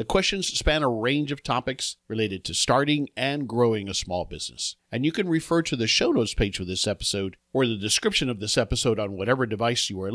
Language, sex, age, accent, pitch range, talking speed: English, male, 50-69, American, 100-140 Hz, 225 wpm